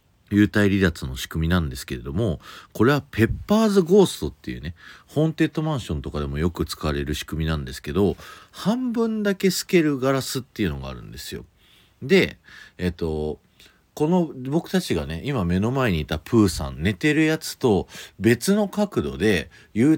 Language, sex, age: Japanese, male, 40-59